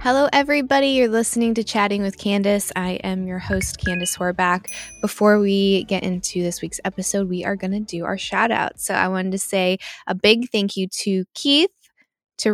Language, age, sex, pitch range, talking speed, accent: English, 10-29, female, 185-235 Hz, 195 wpm, American